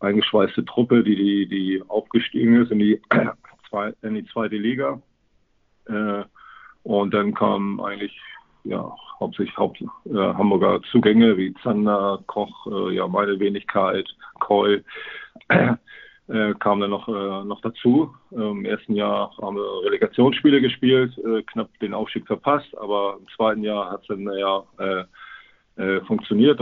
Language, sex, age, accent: German, male, 40-59, German